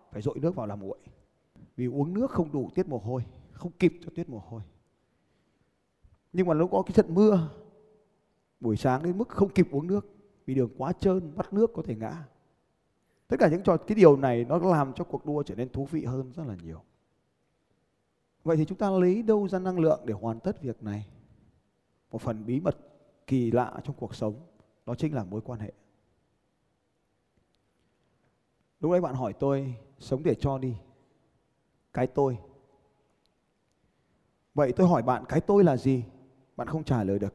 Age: 20-39